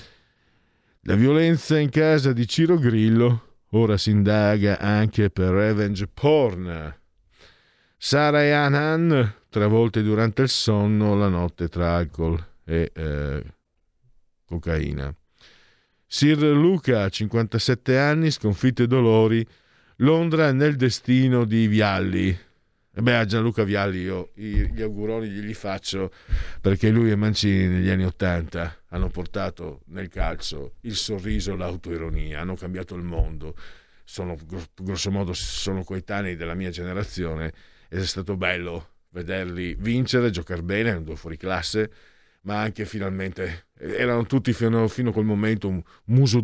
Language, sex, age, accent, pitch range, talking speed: Italian, male, 50-69, native, 85-115 Hz, 130 wpm